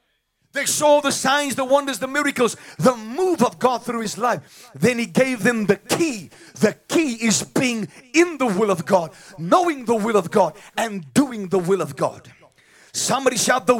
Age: 40-59